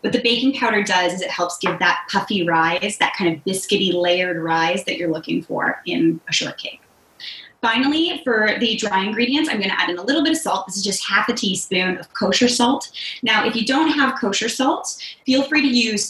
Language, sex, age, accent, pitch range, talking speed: English, female, 20-39, American, 180-250 Hz, 225 wpm